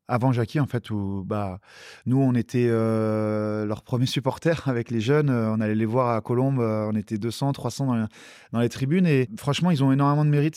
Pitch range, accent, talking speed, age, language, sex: 110-125 Hz, French, 210 wpm, 20-39, French, male